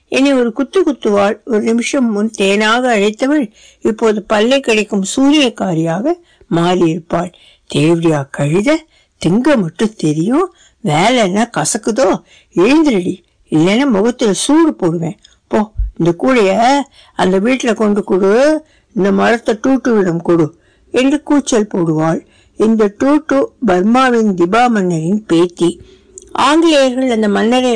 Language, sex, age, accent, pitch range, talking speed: Tamil, female, 60-79, native, 190-270 Hz, 60 wpm